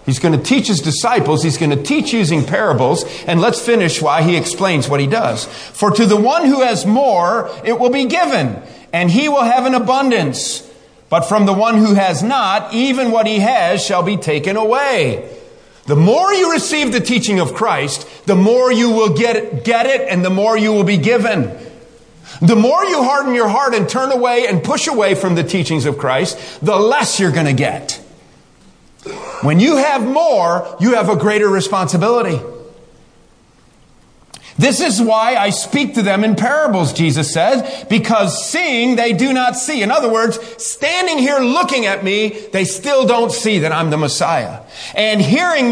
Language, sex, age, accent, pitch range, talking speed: English, male, 40-59, American, 175-250 Hz, 185 wpm